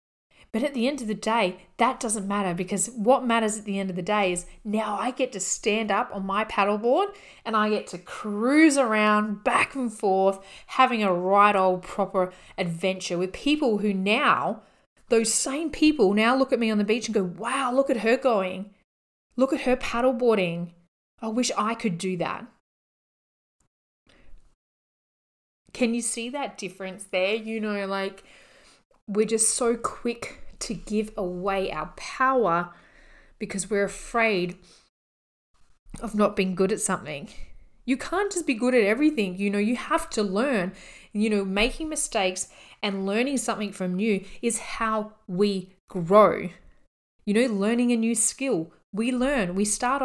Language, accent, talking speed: English, Australian, 165 wpm